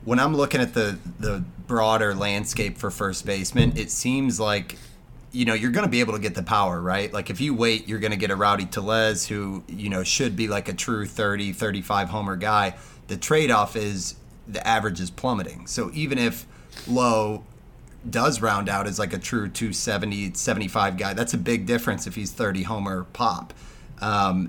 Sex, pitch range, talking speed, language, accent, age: male, 100-115 Hz, 200 wpm, English, American, 30-49